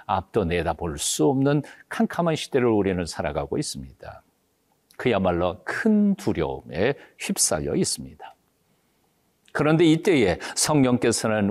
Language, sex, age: Korean, male, 50-69